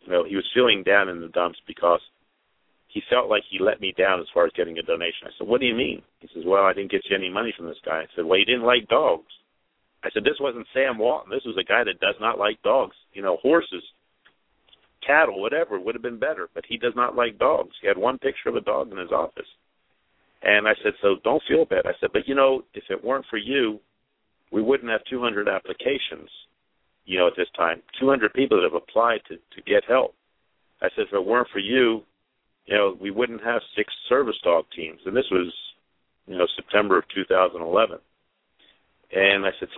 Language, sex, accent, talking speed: English, male, American, 225 wpm